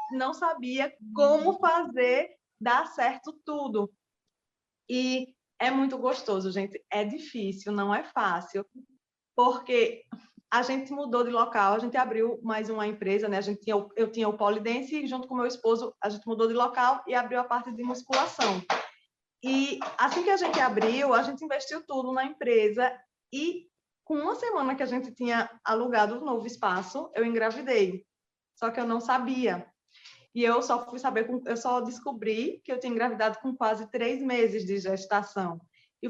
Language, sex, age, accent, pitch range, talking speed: Portuguese, female, 20-39, Brazilian, 220-260 Hz, 175 wpm